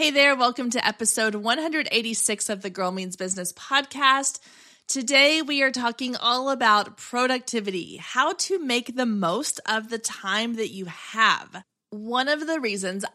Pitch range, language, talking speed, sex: 190-245 Hz, English, 155 wpm, female